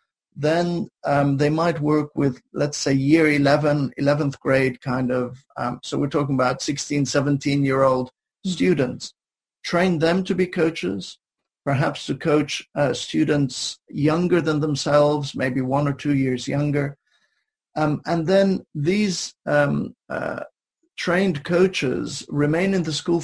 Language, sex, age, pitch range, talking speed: English, male, 50-69, 135-165 Hz, 135 wpm